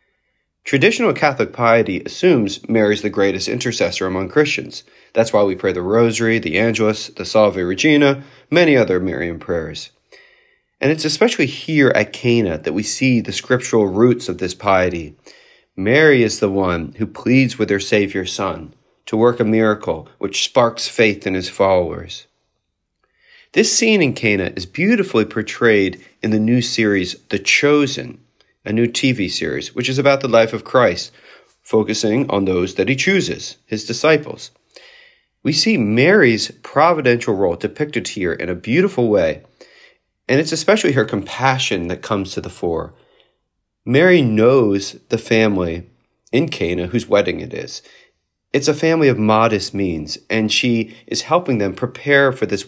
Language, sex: English, male